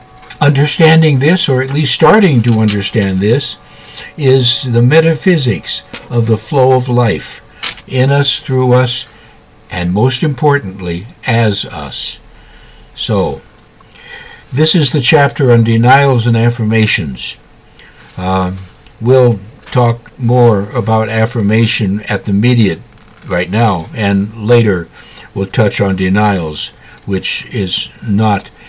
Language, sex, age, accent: English, male, 60-79, American